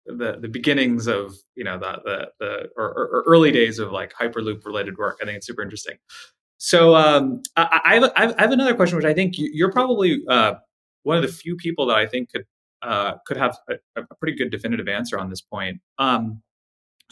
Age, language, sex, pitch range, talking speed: 30-49, English, male, 105-165 Hz, 205 wpm